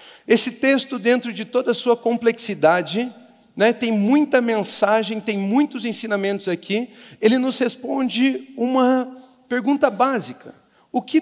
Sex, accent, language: male, Brazilian, Portuguese